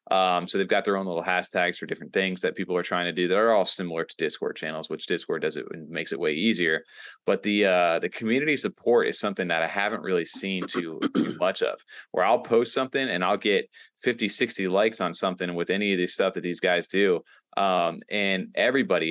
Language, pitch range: English, 90-105 Hz